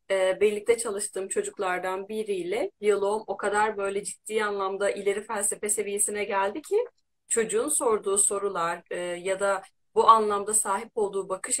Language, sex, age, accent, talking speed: Turkish, female, 30-49, native, 130 wpm